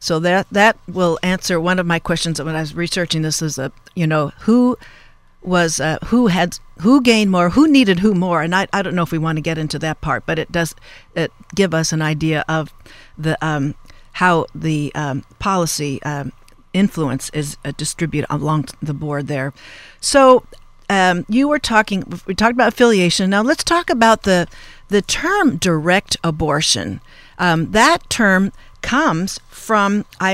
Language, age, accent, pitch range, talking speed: English, 50-69, American, 160-215 Hz, 180 wpm